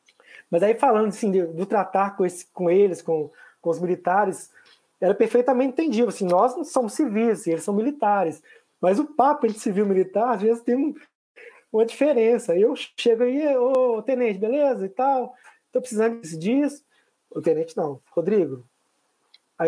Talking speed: 170 wpm